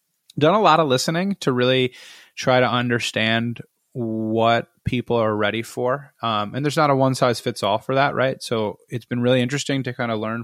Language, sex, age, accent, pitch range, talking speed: English, male, 20-39, American, 110-135 Hz, 190 wpm